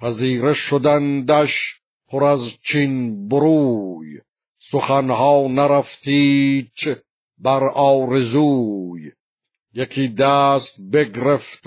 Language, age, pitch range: Persian, 60-79, 125-140 Hz